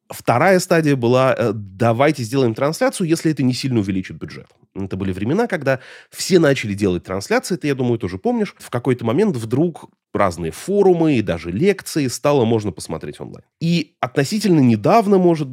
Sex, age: male, 30-49